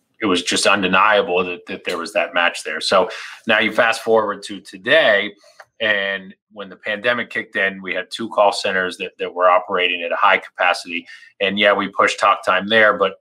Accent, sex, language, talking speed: American, male, English, 205 wpm